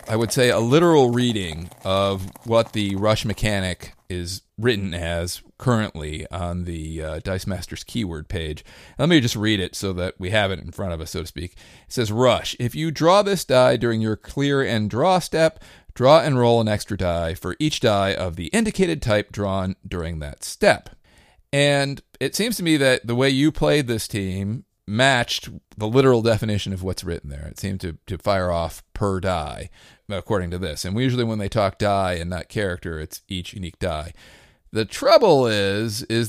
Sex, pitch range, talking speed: male, 90-120 Hz, 195 wpm